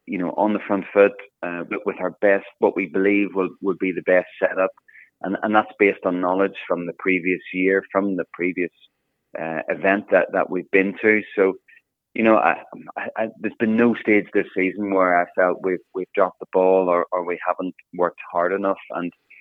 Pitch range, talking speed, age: 90-105 Hz, 205 wpm, 30-49